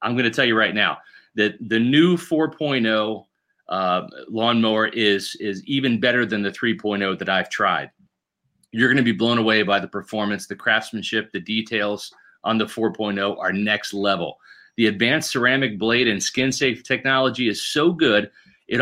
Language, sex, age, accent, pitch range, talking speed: English, male, 30-49, American, 110-140 Hz, 170 wpm